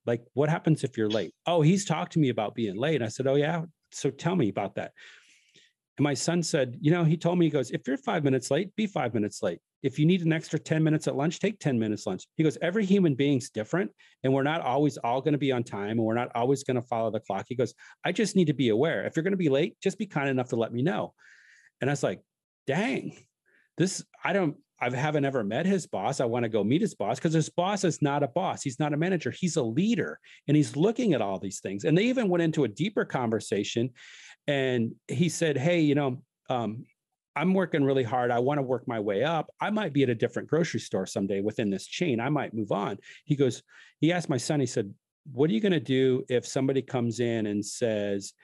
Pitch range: 120-165 Hz